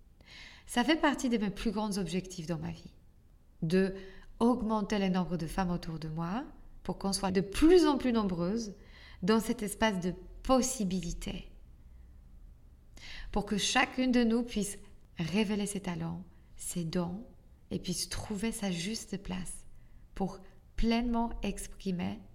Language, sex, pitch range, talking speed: French, female, 170-220 Hz, 140 wpm